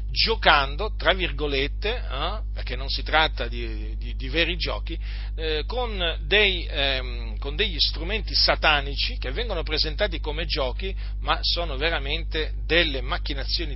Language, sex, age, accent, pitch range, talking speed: Italian, male, 40-59, native, 110-155 Hz, 135 wpm